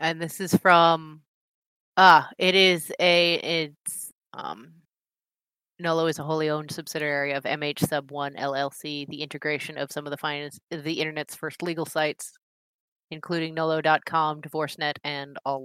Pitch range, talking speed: 150-175 Hz, 150 wpm